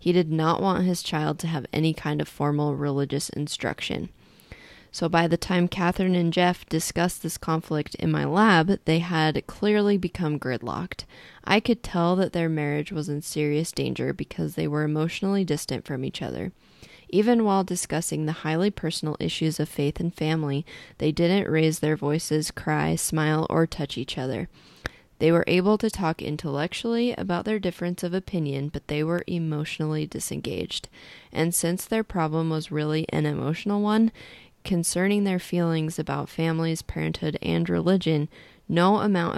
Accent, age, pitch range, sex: American, 20-39, 150-175 Hz, female